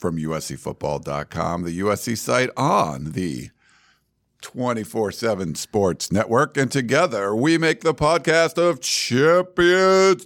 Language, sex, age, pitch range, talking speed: English, male, 50-69, 100-150 Hz, 105 wpm